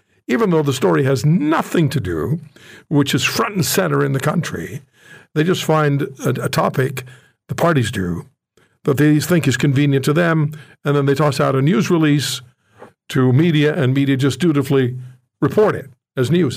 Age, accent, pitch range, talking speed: 60-79, American, 125-150 Hz, 180 wpm